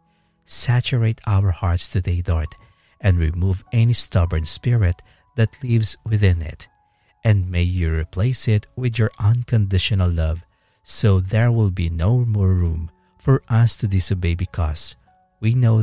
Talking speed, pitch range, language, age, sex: 140 wpm, 85-110 Hz, English, 50-69, male